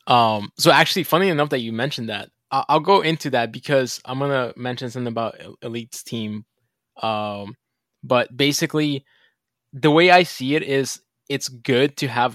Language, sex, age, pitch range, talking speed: English, male, 20-39, 120-140 Hz, 170 wpm